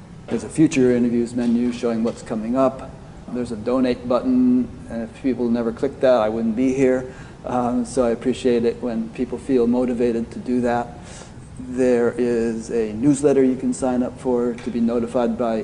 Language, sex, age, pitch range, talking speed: English, male, 40-59, 115-130 Hz, 185 wpm